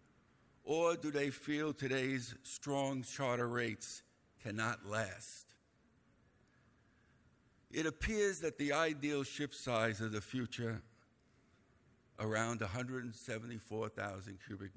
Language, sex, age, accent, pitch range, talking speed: English, male, 60-79, American, 110-140 Hz, 95 wpm